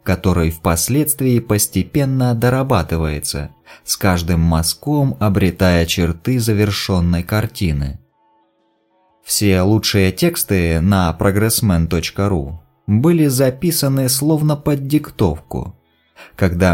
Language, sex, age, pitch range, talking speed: Russian, male, 20-39, 90-130 Hz, 80 wpm